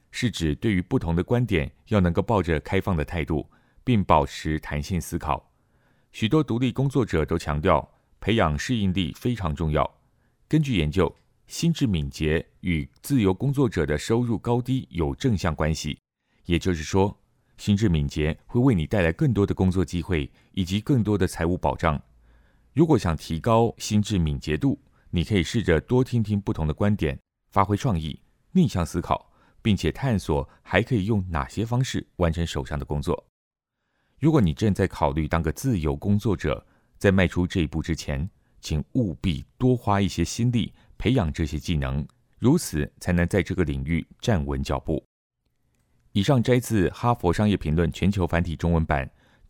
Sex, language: male, Chinese